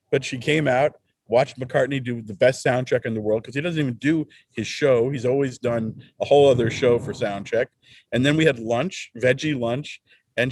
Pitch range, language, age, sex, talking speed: 115-145 Hz, English, 50-69, male, 210 wpm